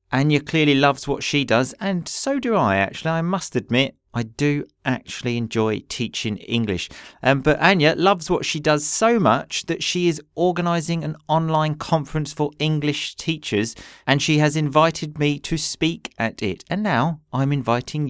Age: 40-59